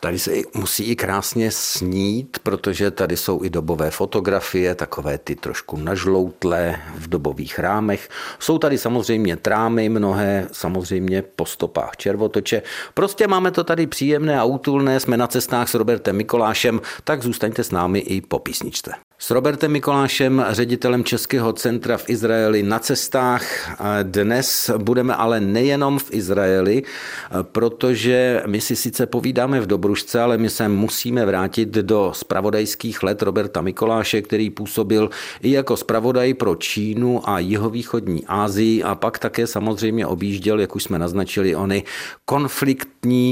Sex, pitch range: male, 100-125 Hz